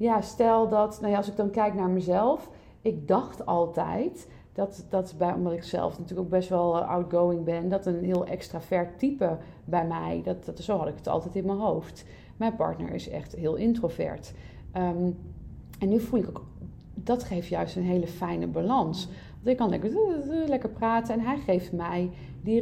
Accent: Dutch